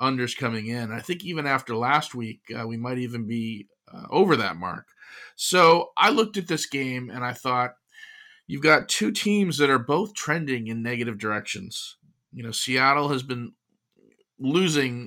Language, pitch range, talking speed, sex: English, 120-145 Hz, 175 wpm, male